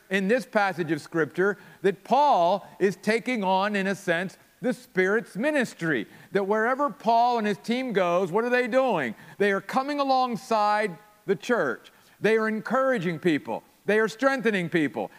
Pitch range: 185-240 Hz